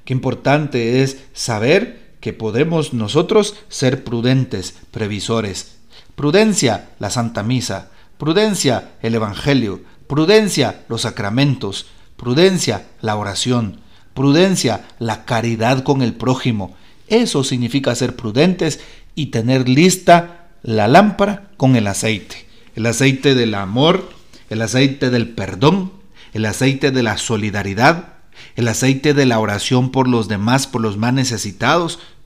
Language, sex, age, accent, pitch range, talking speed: Spanish, male, 40-59, Mexican, 115-150 Hz, 120 wpm